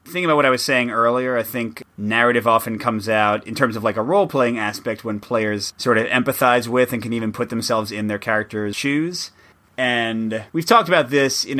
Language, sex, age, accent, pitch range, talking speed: English, male, 30-49, American, 105-130 Hz, 210 wpm